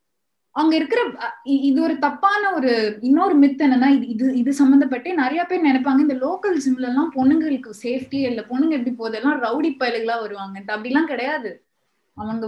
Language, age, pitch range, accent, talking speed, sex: Tamil, 20-39, 220-280 Hz, native, 145 wpm, female